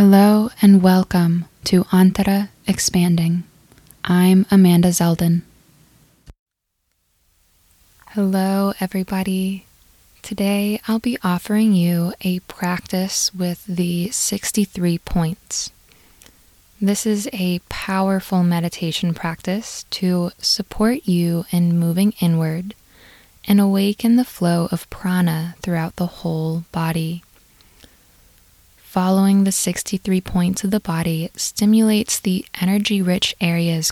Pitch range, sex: 170-195 Hz, female